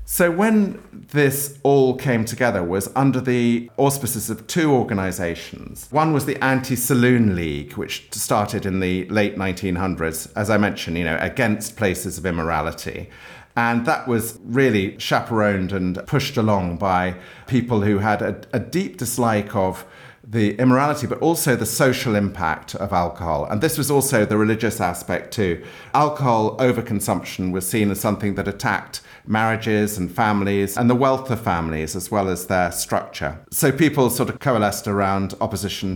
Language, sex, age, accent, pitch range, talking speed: English, male, 50-69, British, 95-130 Hz, 160 wpm